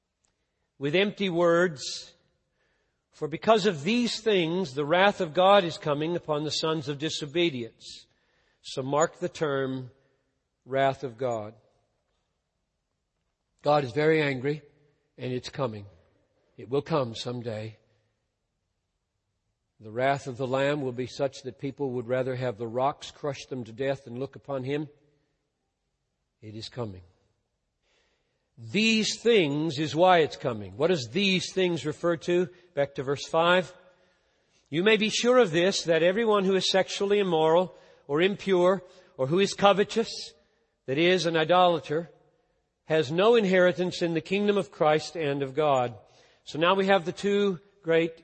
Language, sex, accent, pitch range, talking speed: English, male, American, 130-180 Hz, 150 wpm